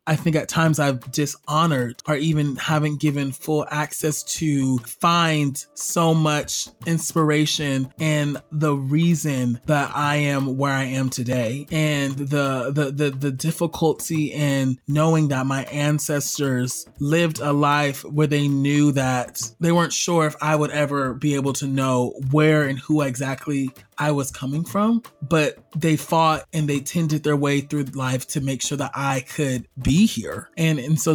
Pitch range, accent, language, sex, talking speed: 145-175 Hz, American, English, male, 165 wpm